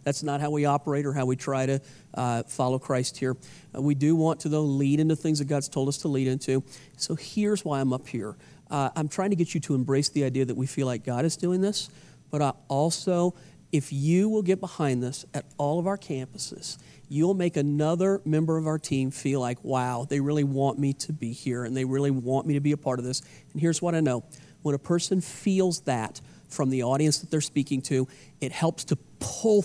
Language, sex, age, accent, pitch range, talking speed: English, male, 40-59, American, 135-160 Hz, 235 wpm